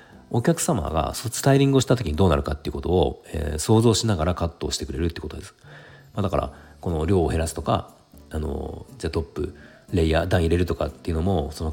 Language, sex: Japanese, male